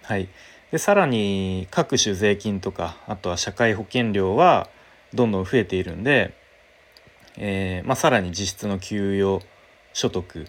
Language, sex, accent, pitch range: Japanese, male, native, 95-130 Hz